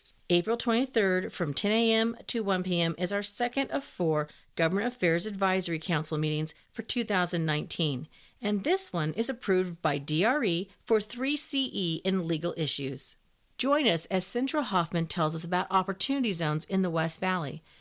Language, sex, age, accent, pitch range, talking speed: English, female, 40-59, American, 165-225 Hz, 155 wpm